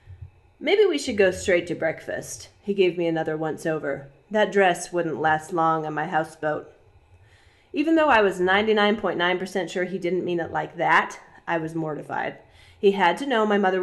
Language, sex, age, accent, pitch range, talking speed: English, female, 30-49, American, 160-210 Hz, 180 wpm